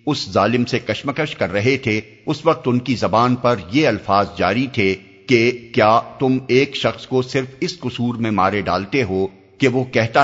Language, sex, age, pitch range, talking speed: Urdu, male, 50-69, 95-130 Hz, 195 wpm